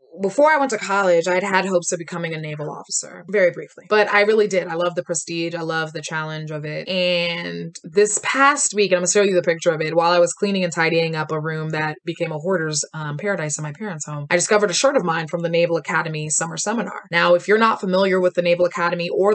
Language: English